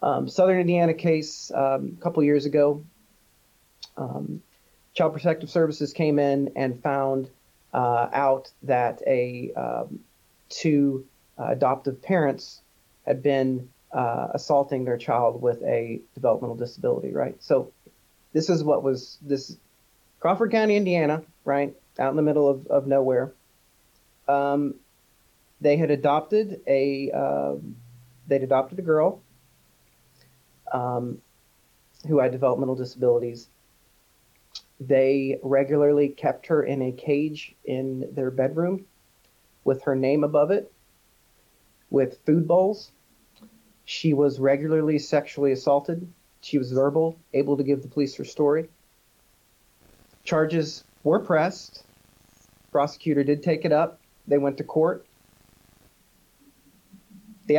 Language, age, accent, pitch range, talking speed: English, 40-59, American, 135-155 Hz, 120 wpm